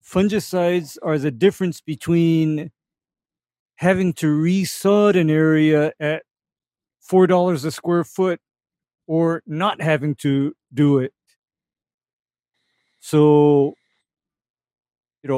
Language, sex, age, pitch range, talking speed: English, male, 50-69, 145-180 Hz, 95 wpm